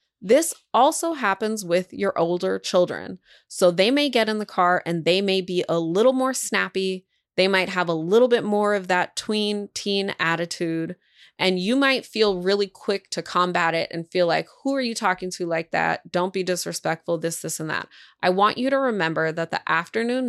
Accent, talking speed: American, 200 wpm